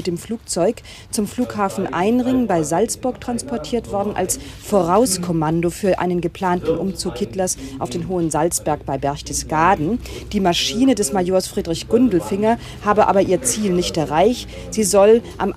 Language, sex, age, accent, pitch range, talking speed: German, female, 40-59, German, 165-205 Hz, 145 wpm